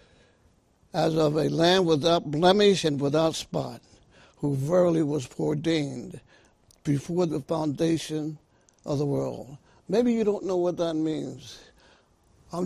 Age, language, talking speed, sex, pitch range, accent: 60-79, English, 130 wpm, male, 130-170 Hz, American